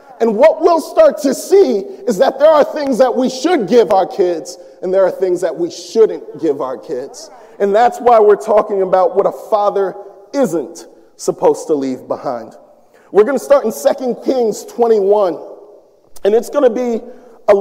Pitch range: 210-335 Hz